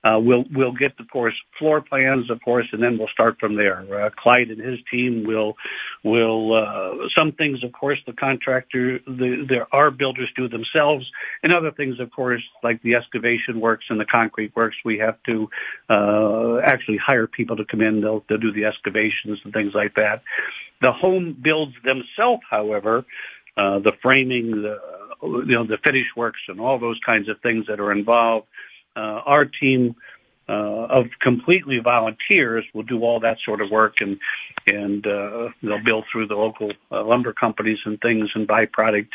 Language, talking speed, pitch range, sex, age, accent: English, 185 wpm, 110-125 Hz, male, 60-79, American